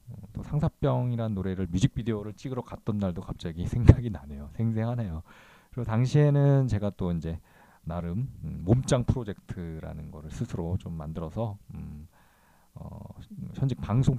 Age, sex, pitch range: 40-59, male, 85-120 Hz